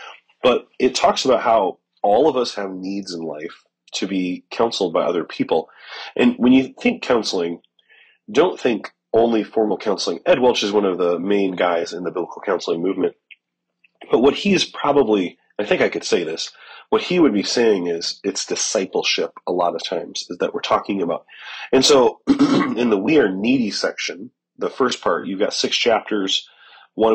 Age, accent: 30-49, American